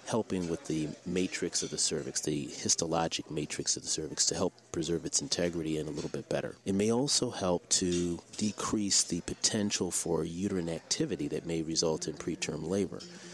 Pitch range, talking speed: 85-105 Hz, 180 wpm